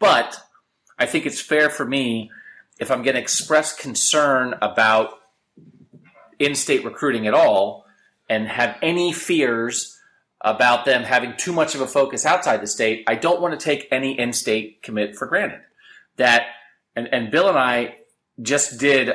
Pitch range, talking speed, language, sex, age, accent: 110-155 Hz, 160 wpm, English, male, 30-49, American